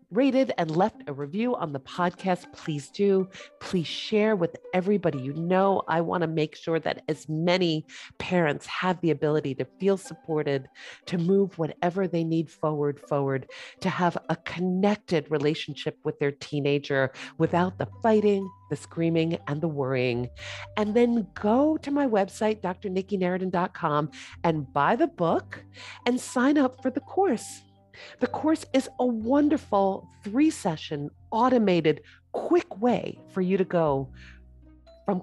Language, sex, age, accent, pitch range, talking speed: English, female, 40-59, American, 155-240 Hz, 145 wpm